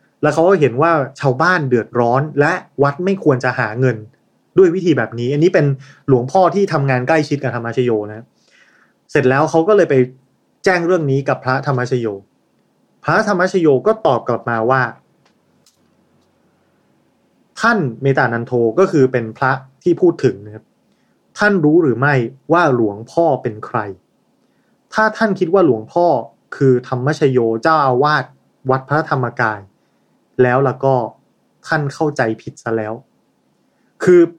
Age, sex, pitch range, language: 20-39, male, 125-165 Hz, Thai